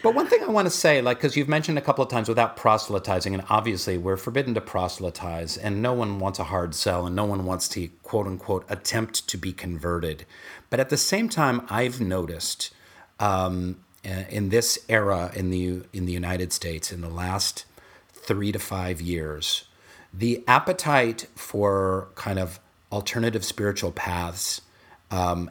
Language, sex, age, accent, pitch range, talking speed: English, male, 40-59, American, 95-125 Hz, 175 wpm